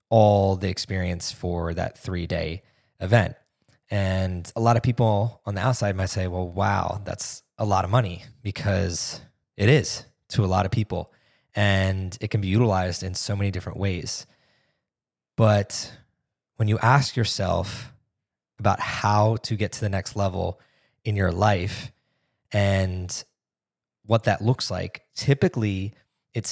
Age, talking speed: 20-39, 145 wpm